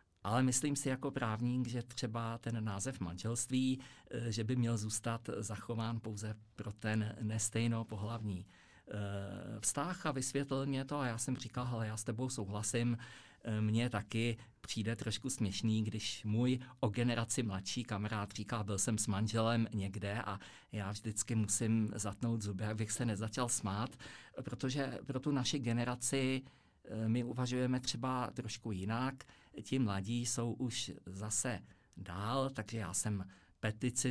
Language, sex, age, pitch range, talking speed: Czech, male, 50-69, 105-120 Hz, 145 wpm